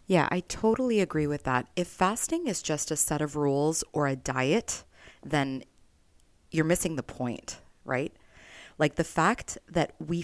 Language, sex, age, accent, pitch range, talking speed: English, female, 30-49, American, 140-170 Hz, 165 wpm